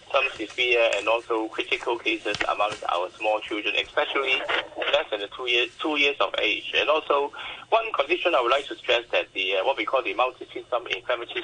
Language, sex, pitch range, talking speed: English, male, 115-165 Hz, 195 wpm